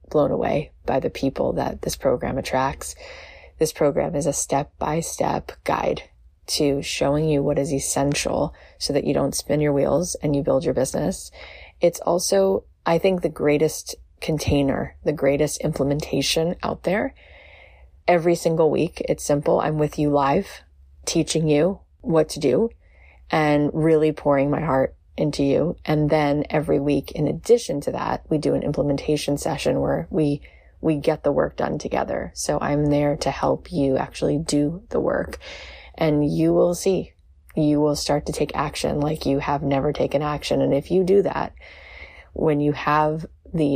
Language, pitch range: English, 140-160 Hz